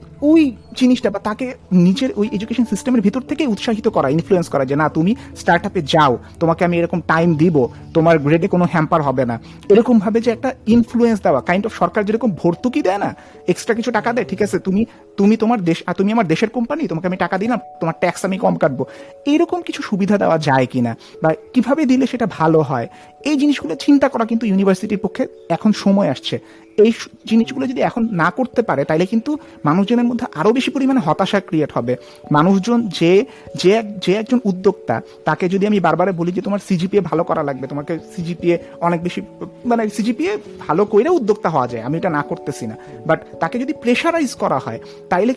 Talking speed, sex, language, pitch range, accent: 155 wpm, male, Bengali, 165-235 Hz, native